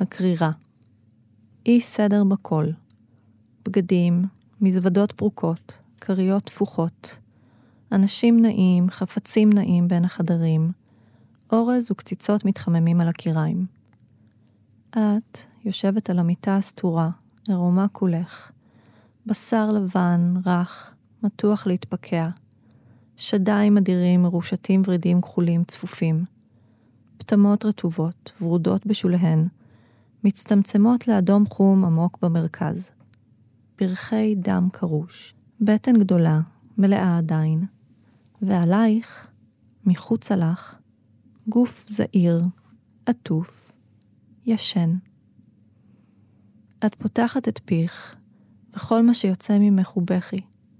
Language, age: Hebrew, 30-49